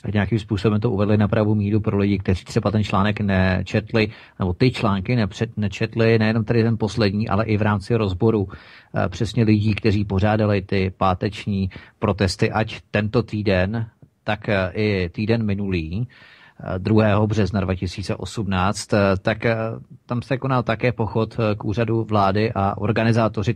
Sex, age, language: male, 40-59, Czech